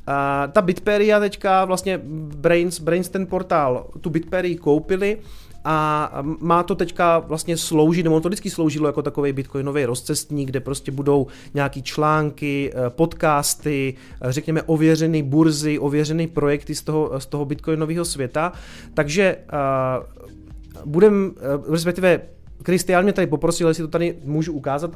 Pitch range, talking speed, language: 140-175 Hz, 135 wpm, Czech